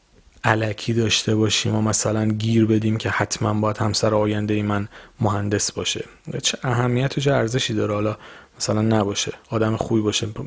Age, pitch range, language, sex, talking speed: 30-49, 110-135 Hz, Persian, male, 160 wpm